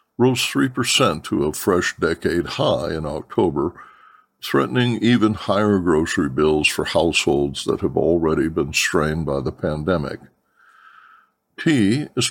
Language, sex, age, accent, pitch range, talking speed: English, male, 60-79, American, 75-100 Hz, 125 wpm